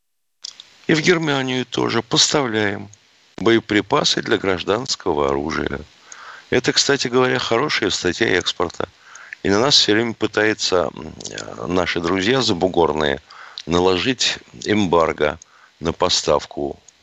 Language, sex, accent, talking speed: Russian, male, native, 100 wpm